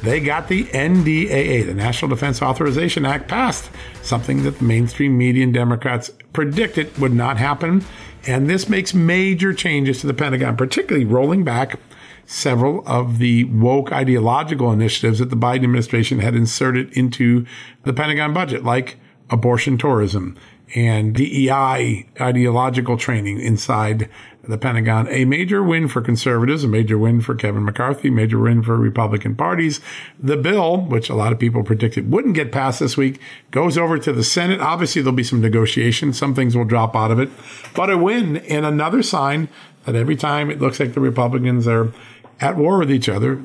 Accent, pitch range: American, 120-150 Hz